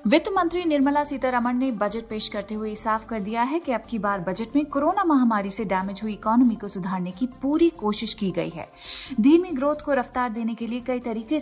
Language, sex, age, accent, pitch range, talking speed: Hindi, female, 30-49, native, 210-265 Hz, 220 wpm